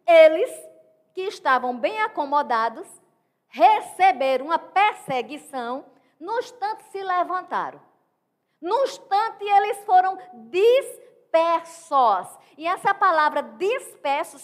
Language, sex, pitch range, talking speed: Portuguese, female, 280-375 Hz, 85 wpm